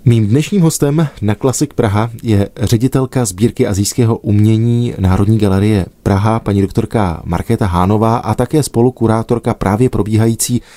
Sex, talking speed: male, 130 wpm